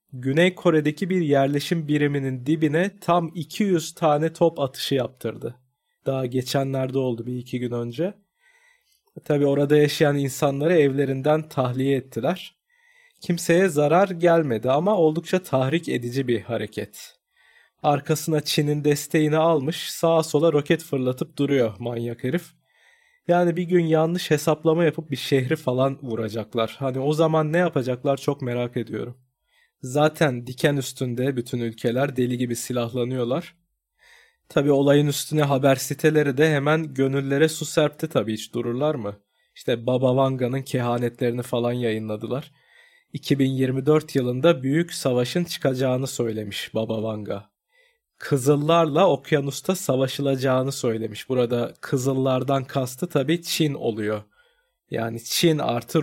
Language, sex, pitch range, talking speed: Turkish, male, 125-160 Hz, 120 wpm